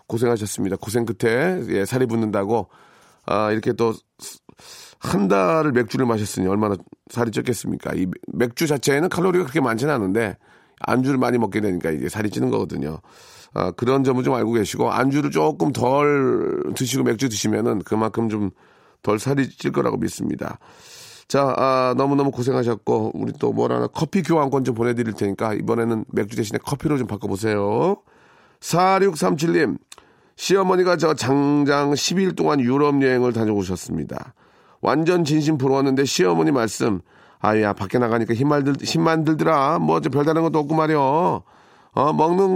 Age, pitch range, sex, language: 40-59, 115-165 Hz, male, Korean